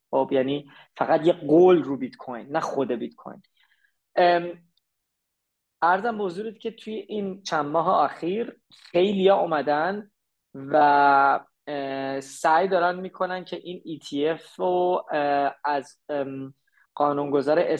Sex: male